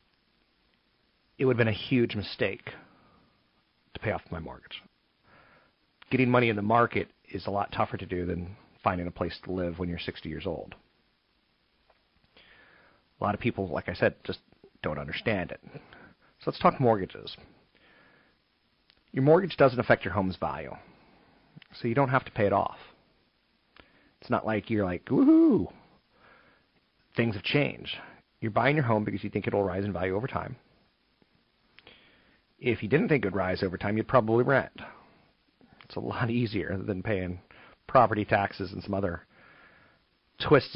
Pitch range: 95-115 Hz